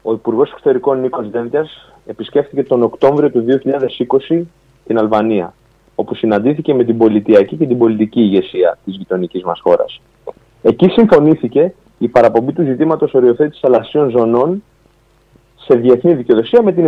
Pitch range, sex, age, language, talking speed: 115-170 Hz, male, 30-49, Greek, 140 wpm